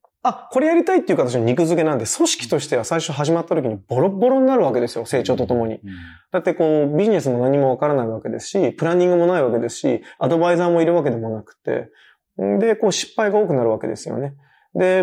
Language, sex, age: Japanese, male, 20-39